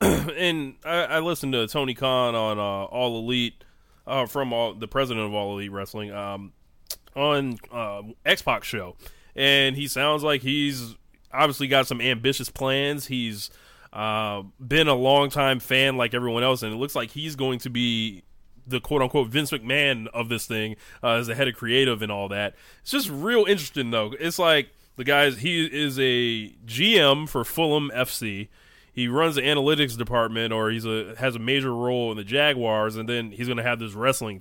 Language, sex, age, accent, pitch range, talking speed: English, male, 20-39, American, 110-140 Hz, 185 wpm